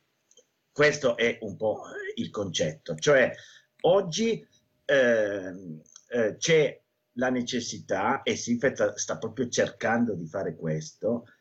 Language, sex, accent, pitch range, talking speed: Italian, male, native, 90-150 Hz, 110 wpm